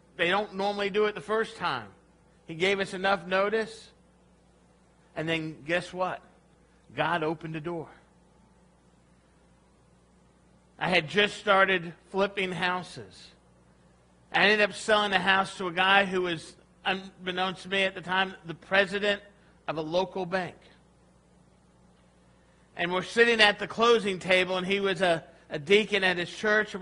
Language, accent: English, American